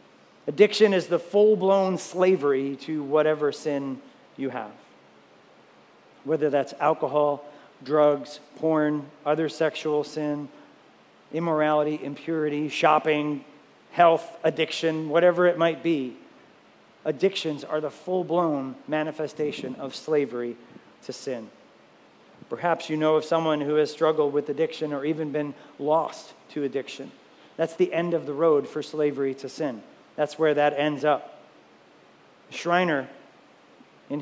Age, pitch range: 40-59, 145-165 Hz